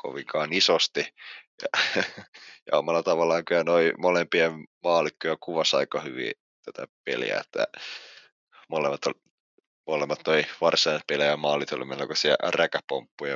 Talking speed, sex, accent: 110 wpm, male, native